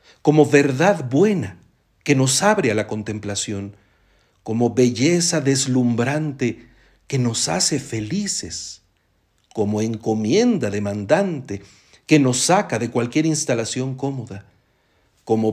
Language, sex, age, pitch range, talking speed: Spanish, male, 60-79, 110-160 Hz, 105 wpm